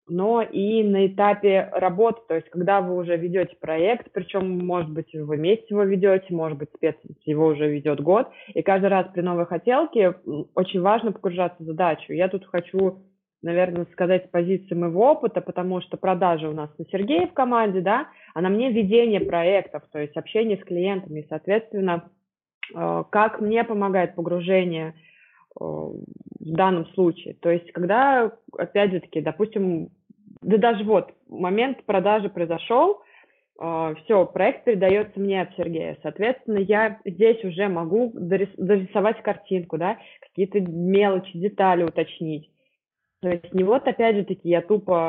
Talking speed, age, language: 150 wpm, 20-39, Russian